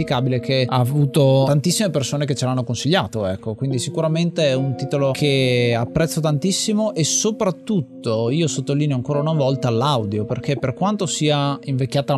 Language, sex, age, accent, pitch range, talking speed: Italian, male, 30-49, native, 130-160 Hz, 155 wpm